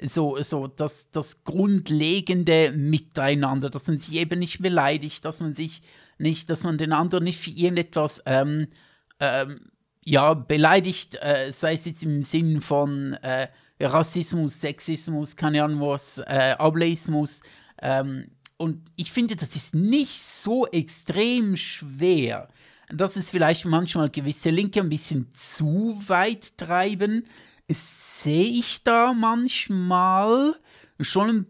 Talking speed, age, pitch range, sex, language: 130 wpm, 50-69, 150-180 Hz, male, German